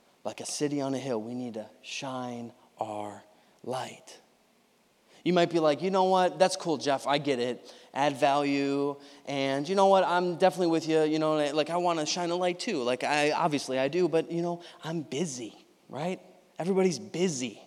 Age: 20-39